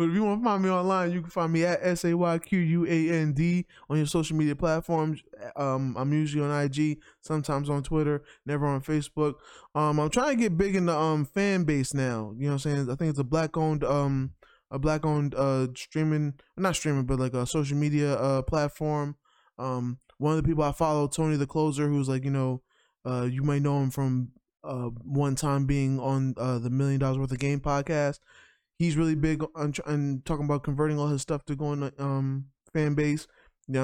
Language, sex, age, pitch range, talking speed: English, male, 20-39, 140-170 Hz, 225 wpm